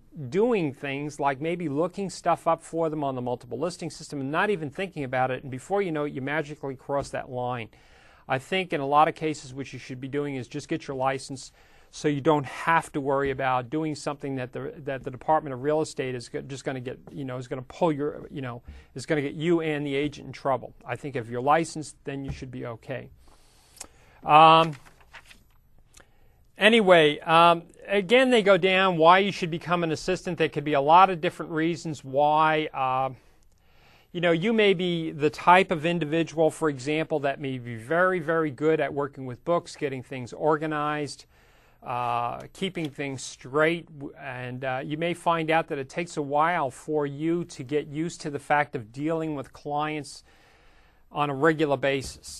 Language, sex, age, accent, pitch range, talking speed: English, male, 40-59, American, 135-165 Hz, 200 wpm